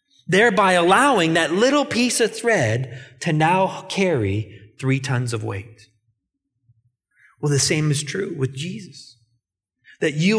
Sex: male